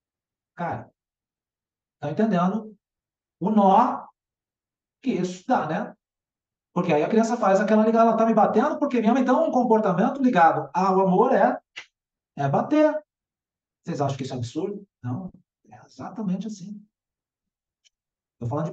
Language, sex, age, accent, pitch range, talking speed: Portuguese, male, 50-69, Brazilian, 165-215 Hz, 145 wpm